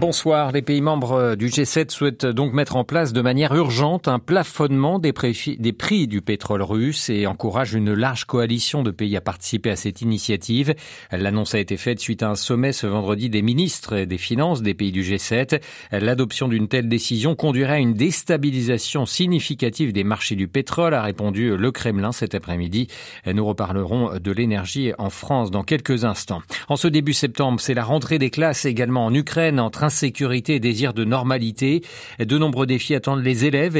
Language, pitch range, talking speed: French, 105-145 Hz, 185 wpm